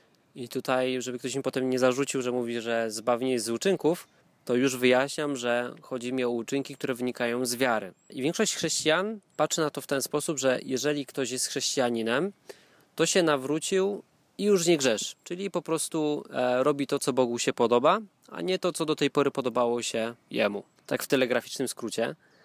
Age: 20-39